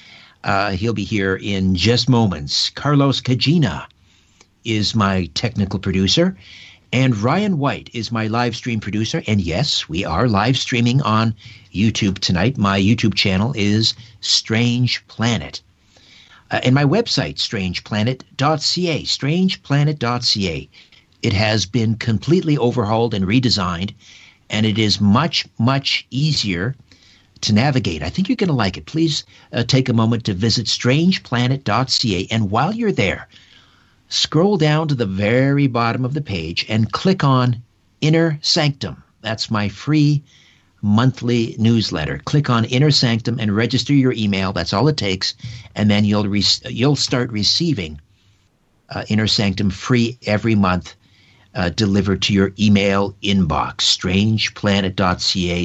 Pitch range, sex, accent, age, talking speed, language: 100-130 Hz, male, American, 50-69, 135 wpm, English